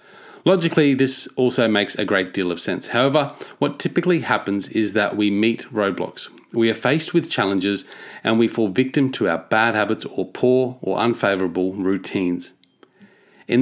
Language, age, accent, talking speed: English, 30-49, Australian, 165 wpm